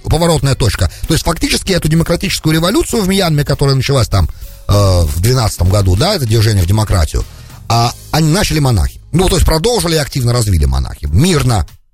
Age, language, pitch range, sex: 40-59, English, 105-165 Hz, male